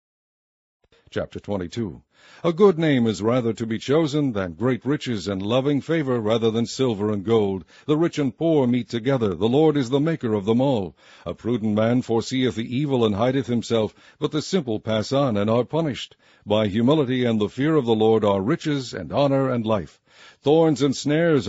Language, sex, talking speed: English, male, 195 wpm